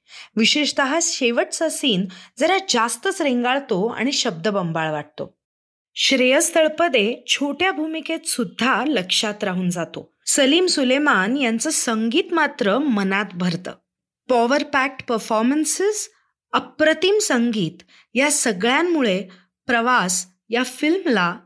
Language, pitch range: Marathi, 220-315 Hz